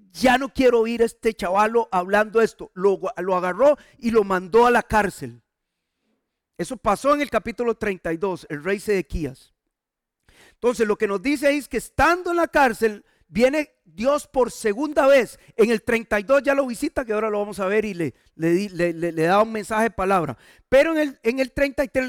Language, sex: Spanish, male